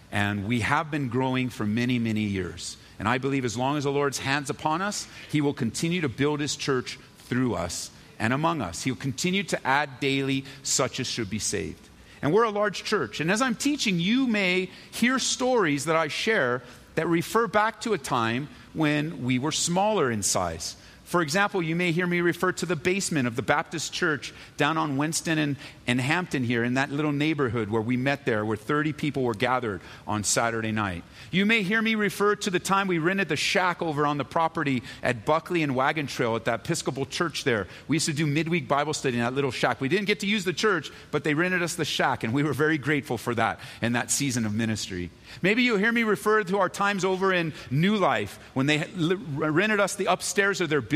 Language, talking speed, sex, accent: English, 225 wpm, male, American